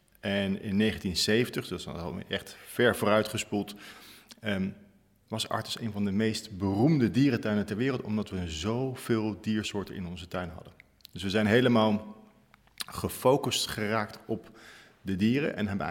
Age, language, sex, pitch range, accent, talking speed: 50-69, Dutch, male, 95-115 Hz, Dutch, 150 wpm